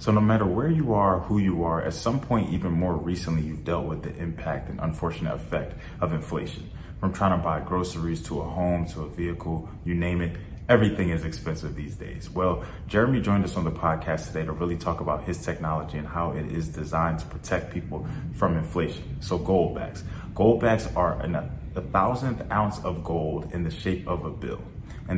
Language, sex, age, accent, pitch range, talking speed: English, male, 30-49, American, 80-95 Hz, 205 wpm